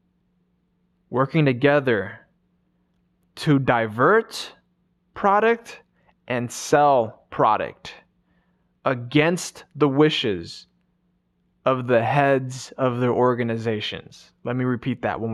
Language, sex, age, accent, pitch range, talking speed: English, male, 20-39, American, 120-165 Hz, 85 wpm